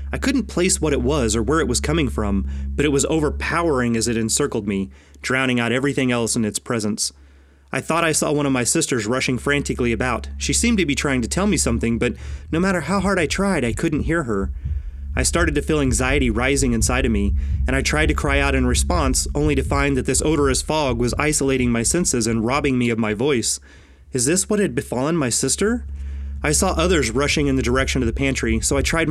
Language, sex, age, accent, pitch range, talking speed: English, male, 30-49, American, 105-140 Hz, 230 wpm